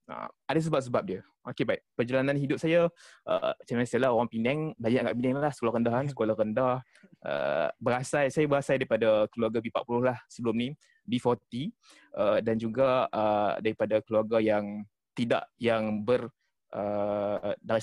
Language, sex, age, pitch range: Malay, male, 20-39, 110-135 Hz